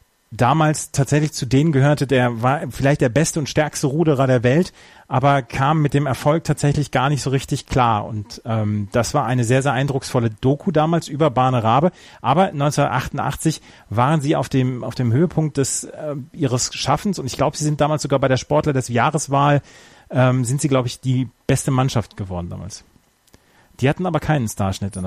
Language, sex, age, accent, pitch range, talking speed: German, male, 30-49, German, 125-155 Hz, 190 wpm